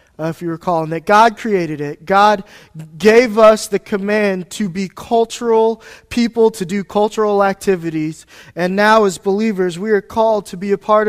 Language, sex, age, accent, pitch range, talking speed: English, male, 20-39, American, 170-230 Hz, 180 wpm